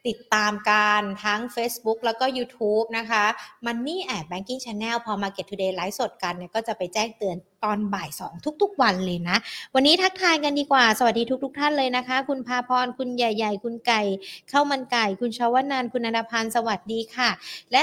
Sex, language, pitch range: female, Thai, 210-255 Hz